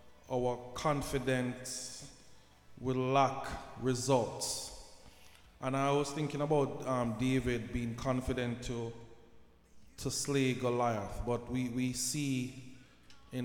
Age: 20-39